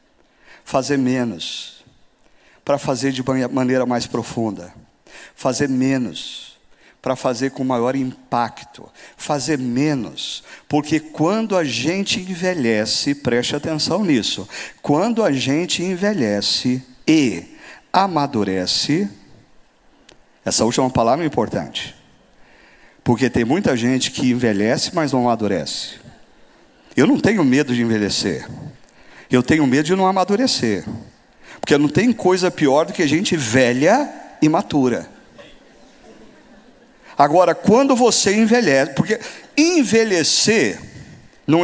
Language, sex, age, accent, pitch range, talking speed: Portuguese, male, 50-69, Brazilian, 130-190 Hz, 110 wpm